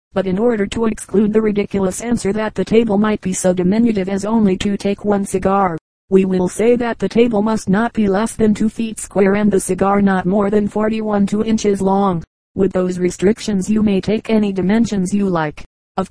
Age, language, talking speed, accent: 40-59, English, 210 wpm, American